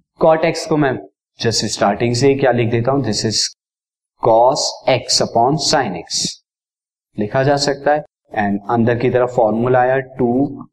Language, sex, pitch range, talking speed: Hindi, male, 125-175 Hz, 160 wpm